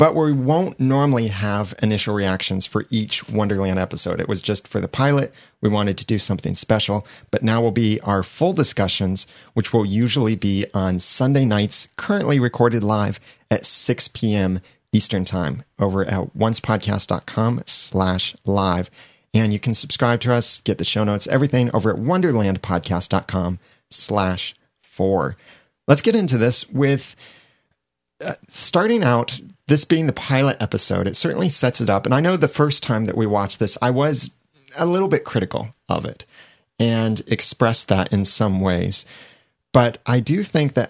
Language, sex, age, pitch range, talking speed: English, male, 30-49, 100-135 Hz, 165 wpm